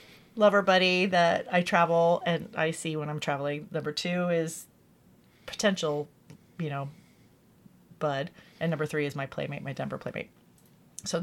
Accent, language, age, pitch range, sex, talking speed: American, English, 30-49, 150-180 Hz, female, 150 wpm